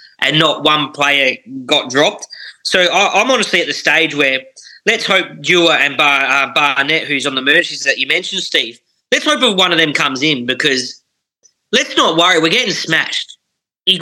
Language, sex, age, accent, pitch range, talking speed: English, male, 20-39, Australian, 145-195 Hz, 195 wpm